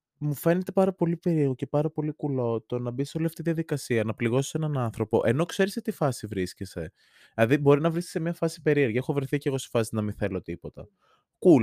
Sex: male